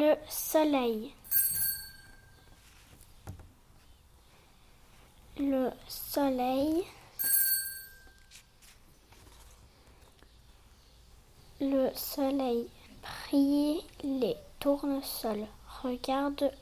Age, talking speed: 30-49, 35 wpm